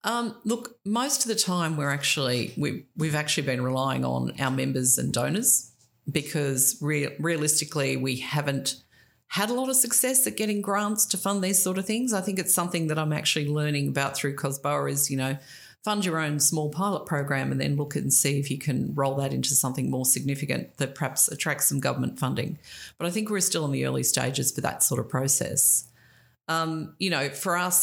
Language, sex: English, female